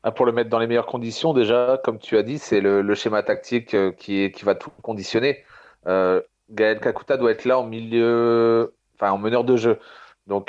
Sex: male